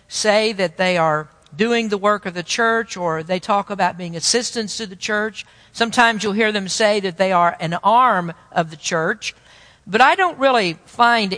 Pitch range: 185-235 Hz